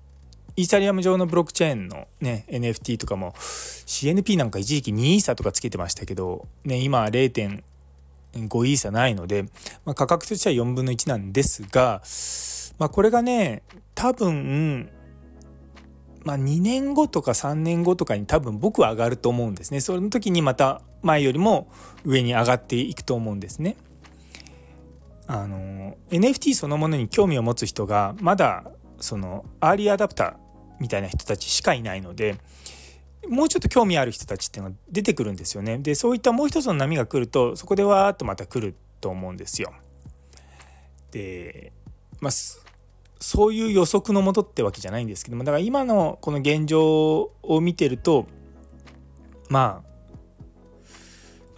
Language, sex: Japanese, male